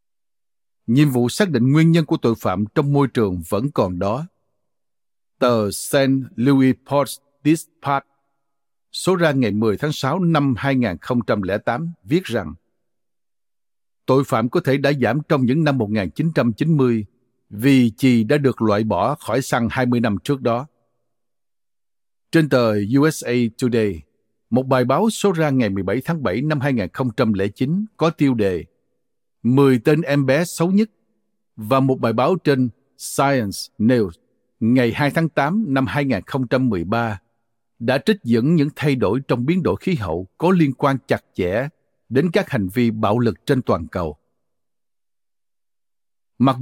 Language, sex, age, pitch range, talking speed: Vietnamese, male, 60-79, 115-150 Hz, 145 wpm